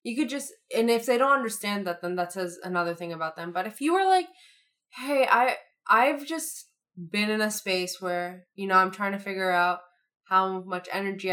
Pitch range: 175-220 Hz